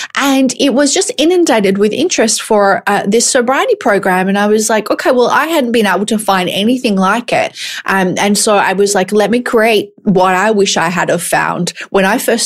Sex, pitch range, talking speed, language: female, 180-225 Hz, 220 wpm, English